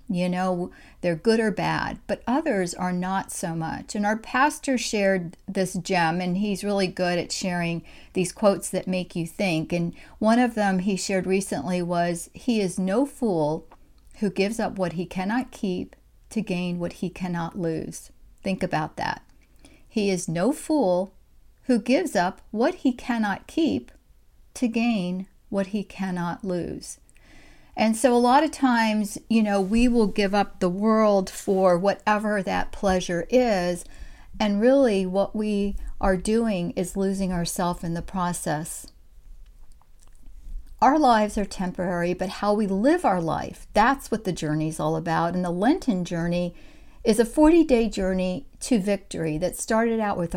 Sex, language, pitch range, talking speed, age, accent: female, English, 180-225 Hz, 165 wpm, 50-69, American